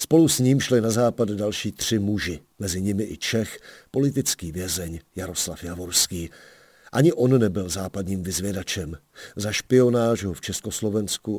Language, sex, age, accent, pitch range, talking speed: Czech, male, 50-69, native, 95-115 Hz, 140 wpm